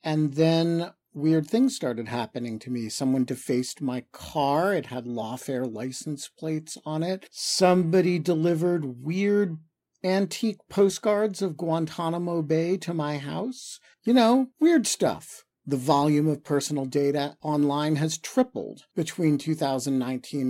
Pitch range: 140-180 Hz